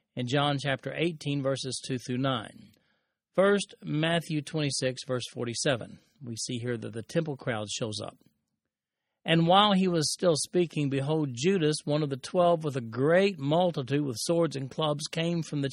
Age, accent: 40-59, American